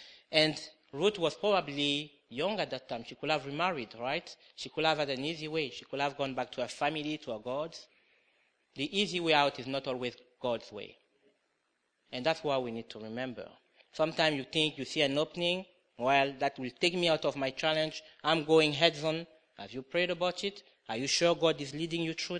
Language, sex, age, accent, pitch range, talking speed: English, male, 30-49, French, 130-175 Hz, 215 wpm